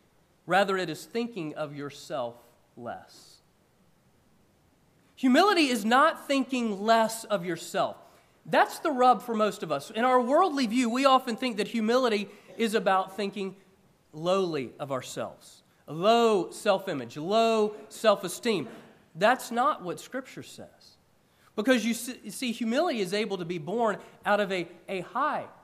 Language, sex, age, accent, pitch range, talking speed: English, male, 30-49, American, 175-245 Hz, 145 wpm